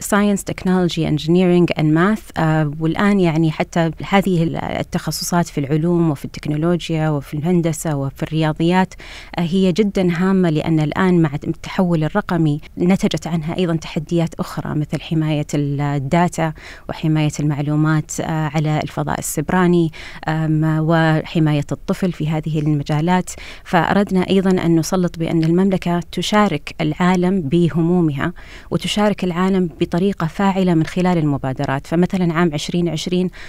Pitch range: 155-180 Hz